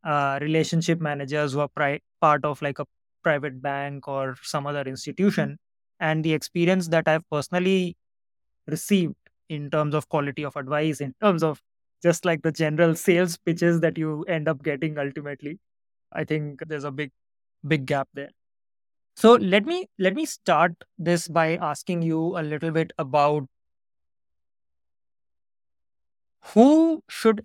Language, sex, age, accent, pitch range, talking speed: English, male, 20-39, Indian, 145-175 Hz, 145 wpm